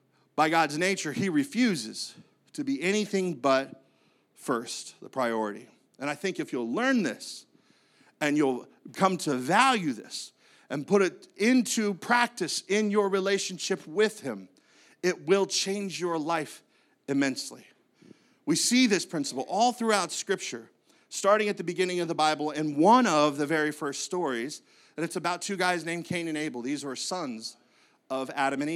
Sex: male